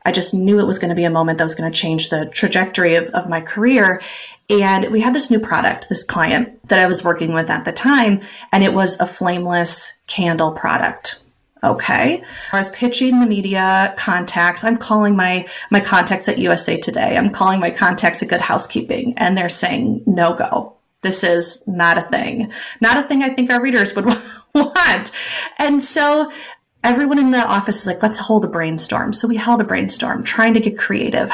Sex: female